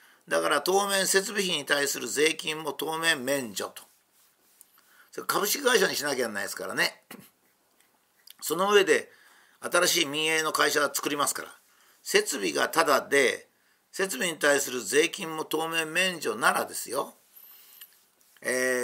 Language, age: Japanese, 50-69